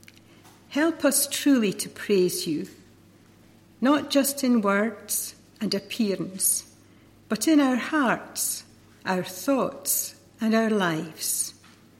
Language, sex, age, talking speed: English, female, 60-79, 105 wpm